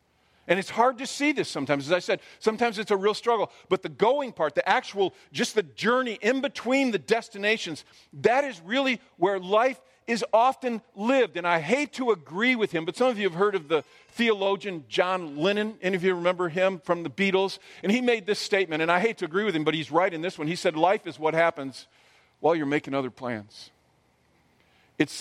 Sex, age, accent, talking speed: male, 50-69, American, 220 wpm